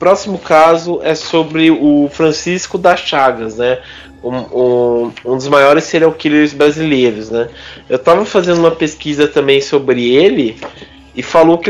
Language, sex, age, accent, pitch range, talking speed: Portuguese, male, 20-39, Brazilian, 125-175 Hz, 155 wpm